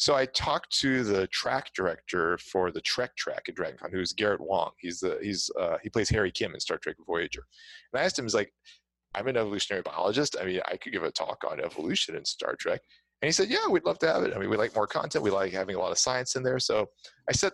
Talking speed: 265 wpm